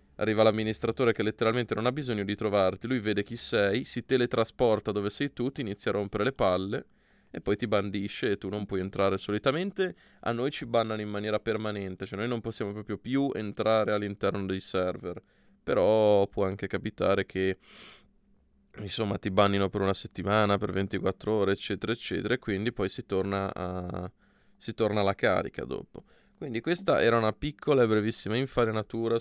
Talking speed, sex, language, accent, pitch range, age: 175 wpm, male, Italian, native, 100-125 Hz, 20-39